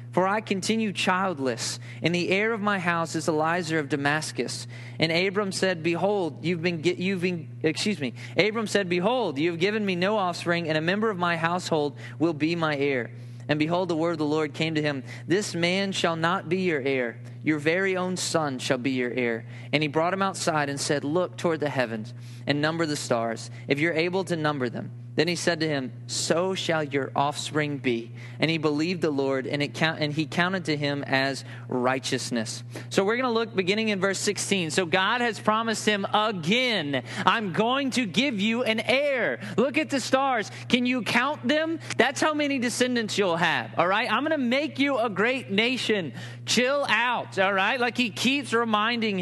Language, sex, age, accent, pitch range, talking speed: English, male, 20-39, American, 135-200 Hz, 200 wpm